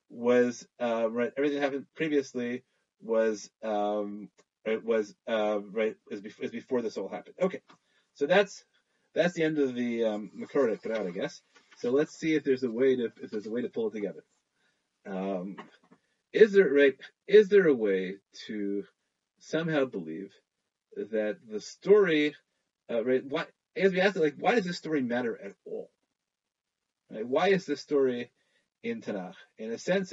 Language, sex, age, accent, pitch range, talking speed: English, male, 30-49, American, 115-170 Hz, 180 wpm